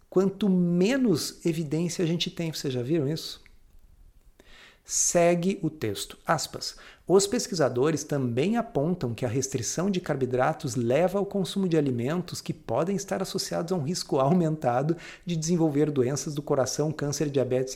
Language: Portuguese